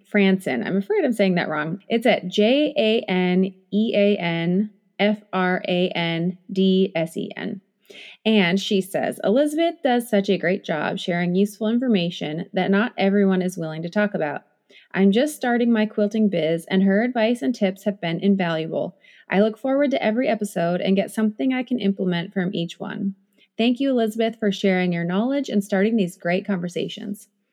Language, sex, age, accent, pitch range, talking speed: English, female, 30-49, American, 185-225 Hz, 185 wpm